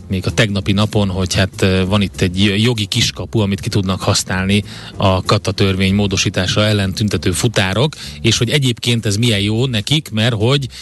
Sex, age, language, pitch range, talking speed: male, 30-49, Hungarian, 100-115 Hz, 165 wpm